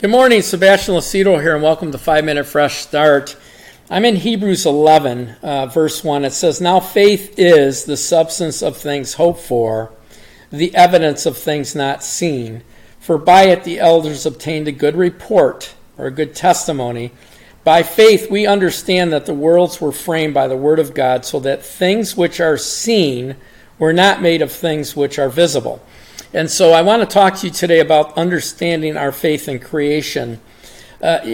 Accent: American